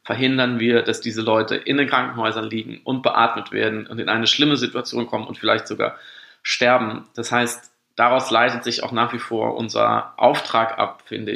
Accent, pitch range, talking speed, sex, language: German, 120-145 Hz, 185 wpm, male, German